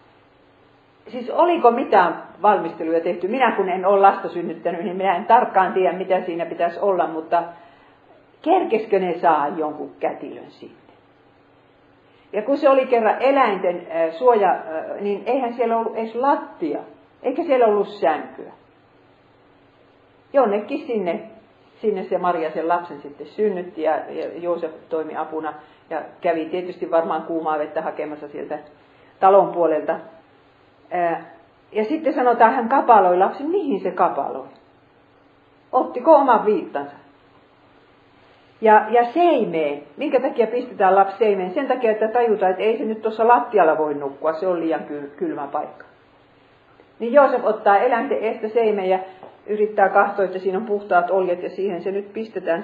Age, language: 50-69, Finnish